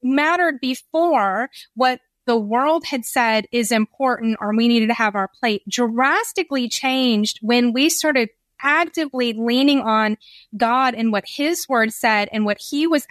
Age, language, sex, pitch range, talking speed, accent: 30-49, English, female, 220-265 Hz, 155 wpm, American